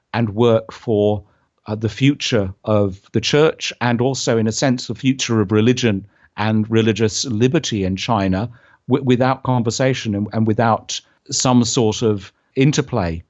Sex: male